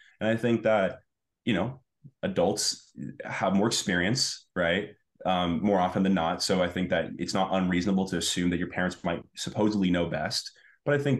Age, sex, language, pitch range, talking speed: 20-39, male, English, 90-115 Hz, 190 wpm